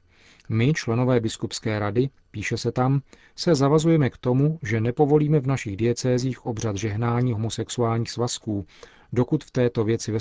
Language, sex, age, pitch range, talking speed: Czech, male, 40-59, 110-130 Hz, 145 wpm